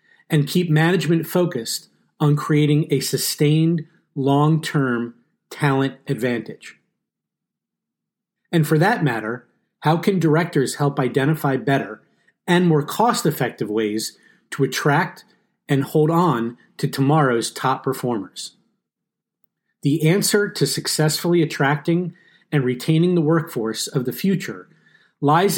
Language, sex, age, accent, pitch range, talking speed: English, male, 40-59, American, 135-170 Hz, 110 wpm